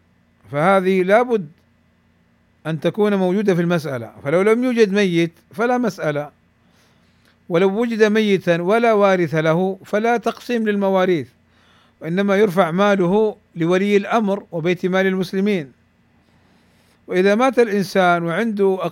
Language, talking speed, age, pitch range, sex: Arabic, 110 wpm, 50-69, 170-220 Hz, male